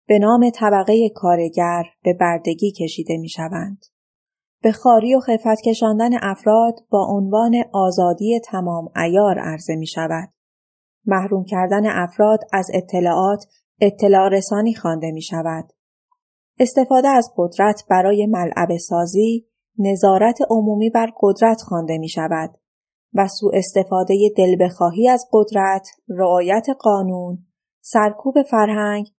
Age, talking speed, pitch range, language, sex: 30-49, 115 wpm, 180-225 Hz, Persian, female